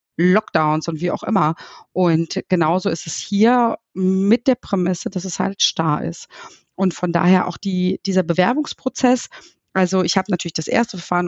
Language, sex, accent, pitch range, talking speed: German, female, German, 175-225 Hz, 170 wpm